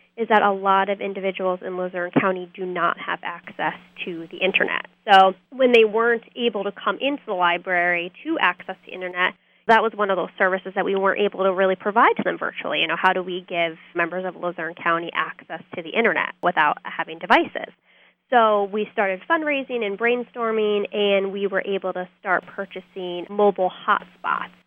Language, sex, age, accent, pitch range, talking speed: English, female, 20-39, American, 180-205 Hz, 190 wpm